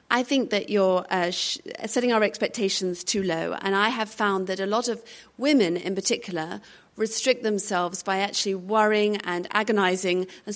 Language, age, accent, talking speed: English, 40-59, British, 165 wpm